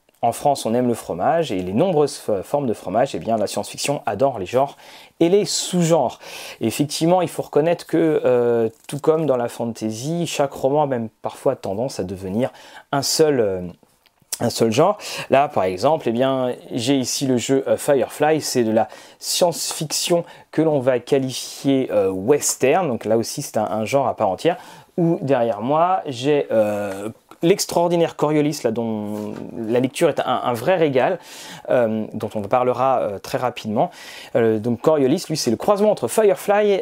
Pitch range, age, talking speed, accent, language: 115-160 Hz, 30-49, 190 wpm, French, French